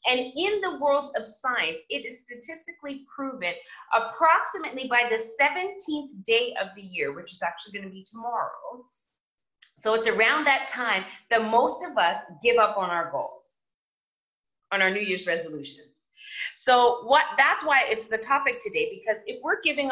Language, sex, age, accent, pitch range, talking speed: English, female, 20-39, American, 215-325 Hz, 170 wpm